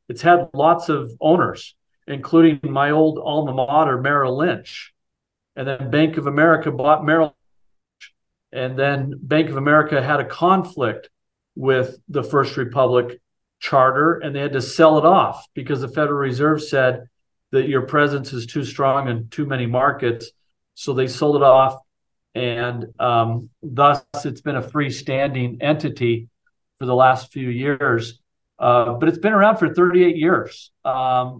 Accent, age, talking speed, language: American, 50-69, 155 wpm, English